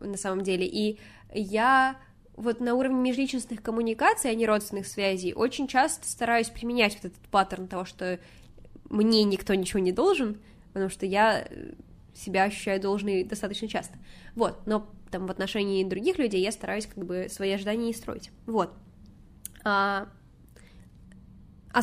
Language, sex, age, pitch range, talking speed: Russian, female, 10-29, 195-250 Hz, 150 wpm